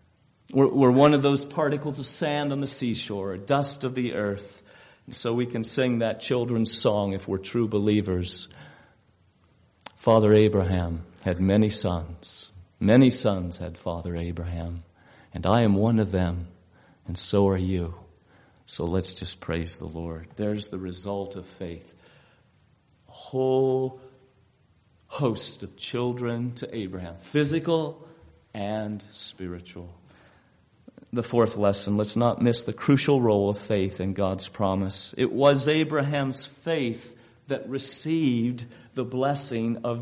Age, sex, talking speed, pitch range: 40-59, male, 135 wpm, 100-145 Hz